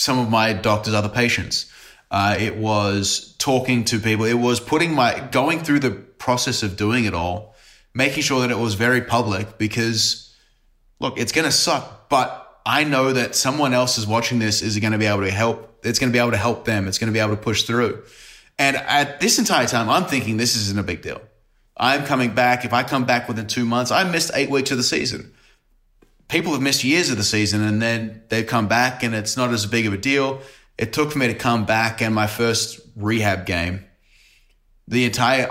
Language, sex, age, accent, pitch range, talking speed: English, male, 20-39, Australian, 105-125 Hz, 225 wpm